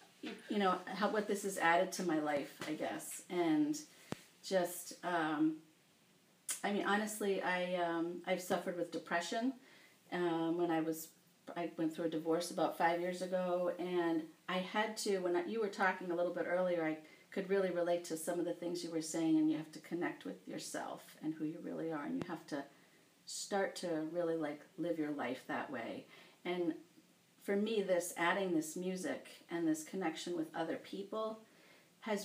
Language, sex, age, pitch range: English, female, 40-59, 170-220 Hz